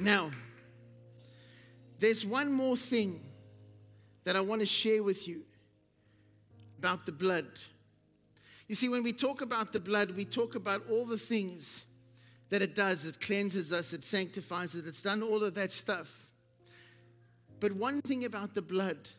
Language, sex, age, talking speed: English, male, 50-69, 155 wpm